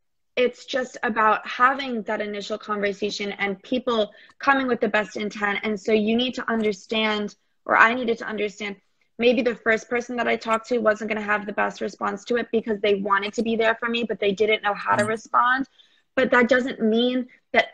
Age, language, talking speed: 20-39, English, 210 wpm